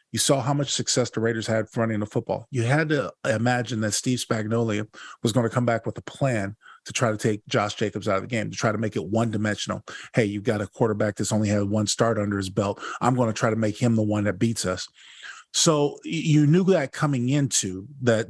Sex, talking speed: male, 245 wpm